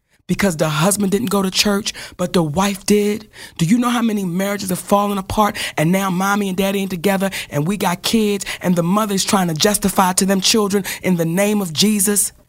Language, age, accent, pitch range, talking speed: English, 30-49, American, 185-215 Hz, 215 wpm